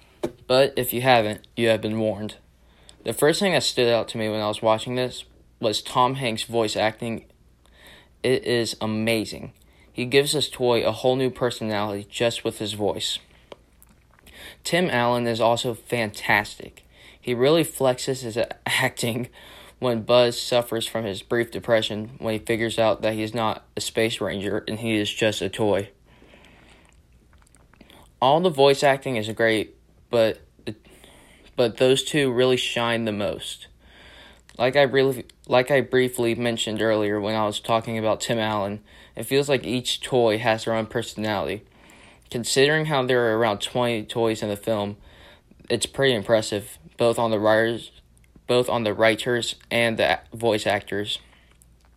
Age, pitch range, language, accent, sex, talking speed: 20-39, 105-125 Hz, English, American, male, 160 wpm